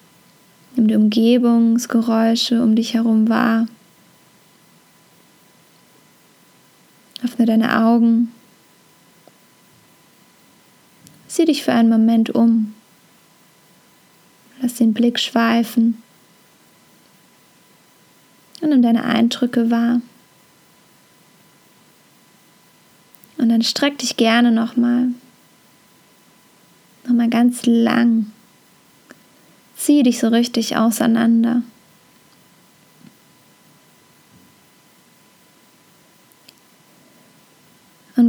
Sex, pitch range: female, 230-245 Hz